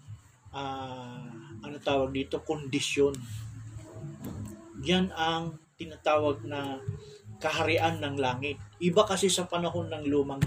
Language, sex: Filipino, male